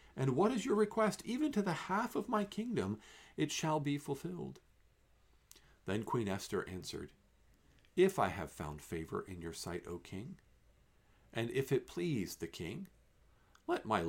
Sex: male